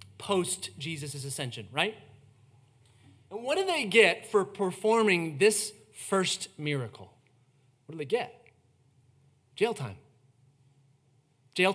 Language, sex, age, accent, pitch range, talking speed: English, male, 30-49, American, 130-185 Hz, 100 wpm